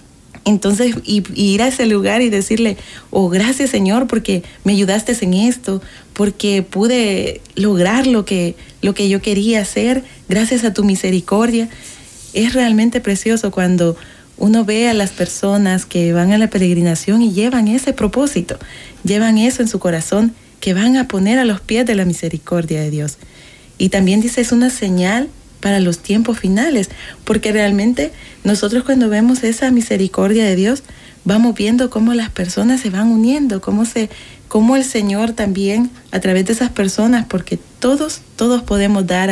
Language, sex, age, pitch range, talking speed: Spanish, female, 30-49, 190-230 Hz, 165 wpm